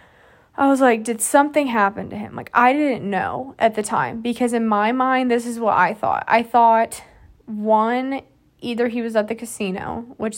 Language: English